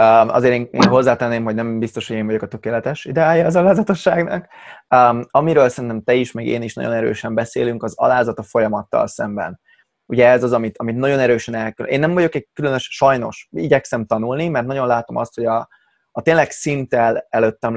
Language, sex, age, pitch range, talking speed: Hungarian, male, 20-39, 115-130 Hz, 195 wpm